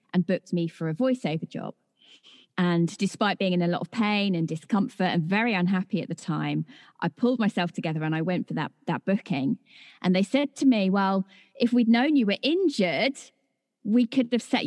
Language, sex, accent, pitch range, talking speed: English, female, British, 180-240 Hz, 205 wpm